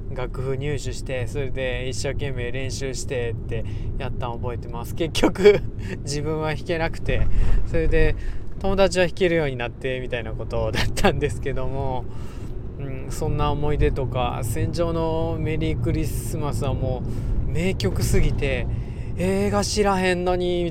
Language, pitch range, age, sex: Japanese, 115-155 Hz, 20-39, male